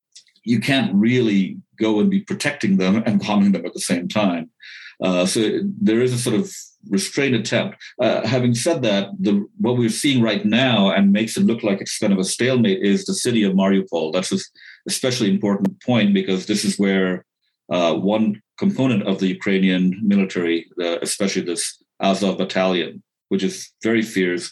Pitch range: 95-120 Hz